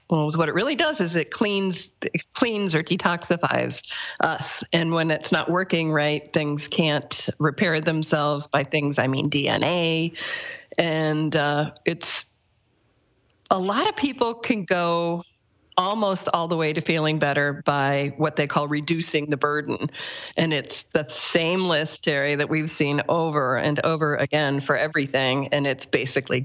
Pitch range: 150-180 Hz